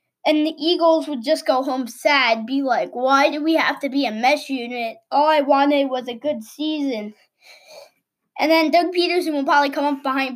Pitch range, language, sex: 265-330 Hz, English, female